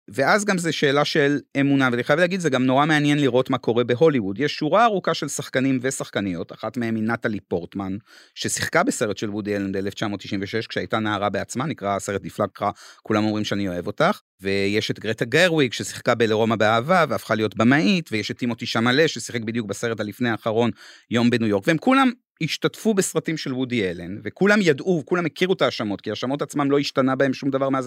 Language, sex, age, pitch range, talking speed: Hebrew, male, 30-49, 110-145 Hz, 185 wpm